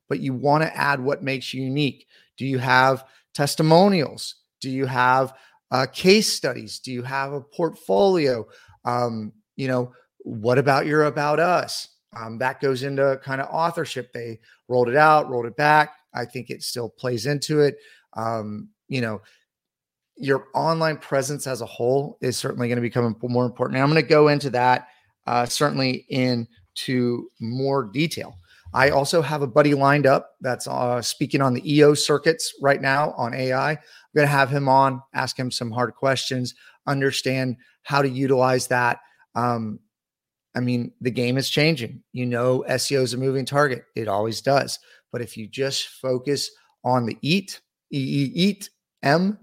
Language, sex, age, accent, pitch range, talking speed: English, male, 30-49, American, 125-145 Hz, 170 wpm